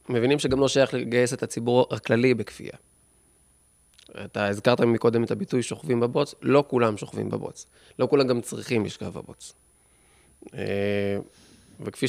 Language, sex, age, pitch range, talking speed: Hebrew, male, 20-39, 100-125 Hz, 135 wpm